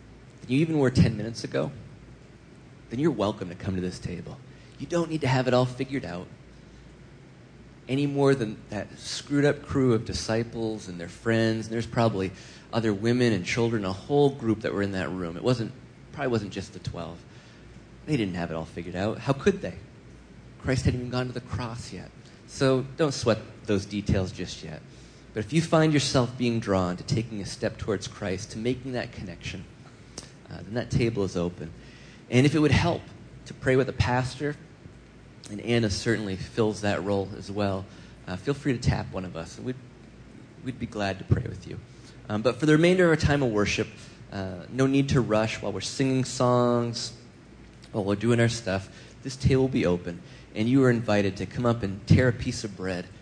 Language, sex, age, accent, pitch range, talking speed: English, male, 30-49, American, 100-130 Hz, 205 wpm